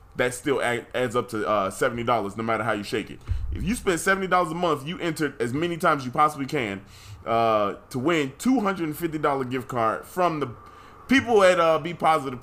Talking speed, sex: 205 wpm, male